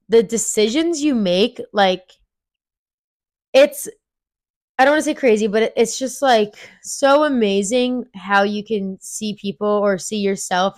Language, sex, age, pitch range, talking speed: English, female, 20-39, 185-230 Hz, 145 wpm